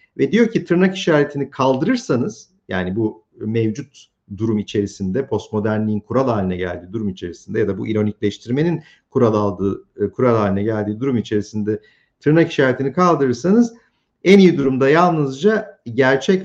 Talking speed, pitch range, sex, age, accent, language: 135 wpm, 110-175 Hz, male, 50-69, native, Turkish